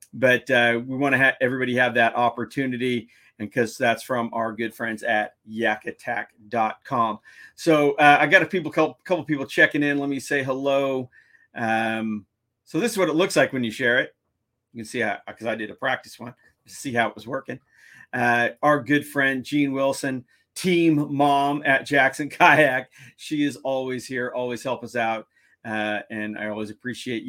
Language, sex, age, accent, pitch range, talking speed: English, male, 40-59, American, 115-145 Hz, 185 wpm